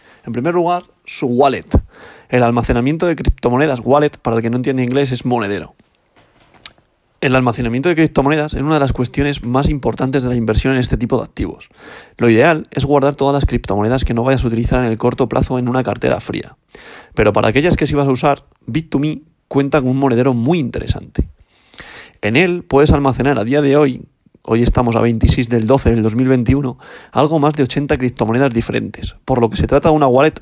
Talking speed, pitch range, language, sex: 200 wpm, 120-145 Hz, Spanish, male